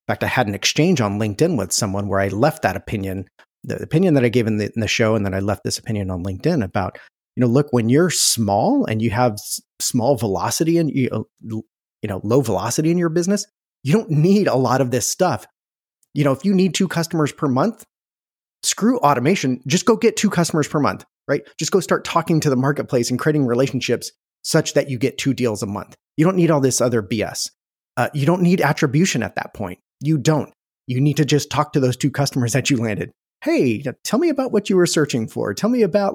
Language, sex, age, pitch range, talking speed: English, male, 30-49, 115-155 Hz, 230 wpm